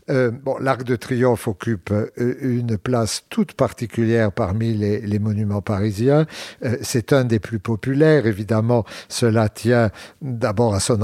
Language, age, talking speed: French, 60-79, 145 wpm